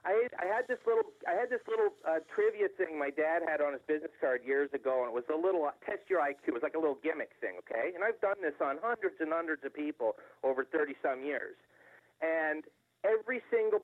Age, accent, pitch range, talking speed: 40-59, American, 145-235 Hz, 235 wpm